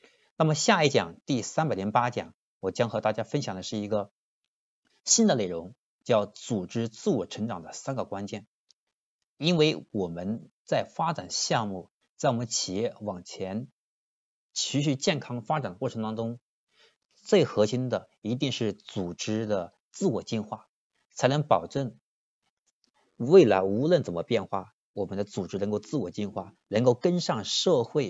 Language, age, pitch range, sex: Chinese, 50-69, 100-135 Hz, male